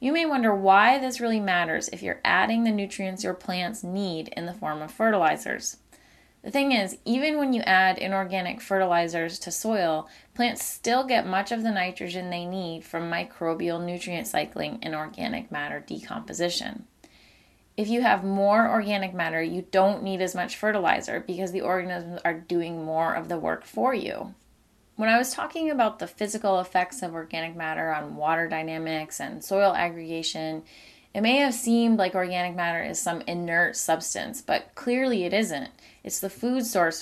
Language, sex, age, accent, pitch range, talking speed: English, female, 20-39, American, 165-215 Hz, 175 wpm